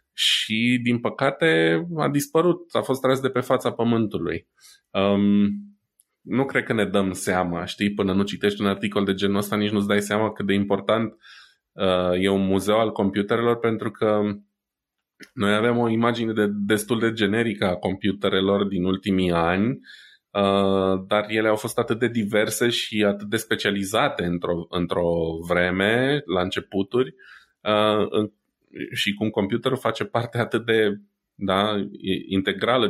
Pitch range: 95-110 Hz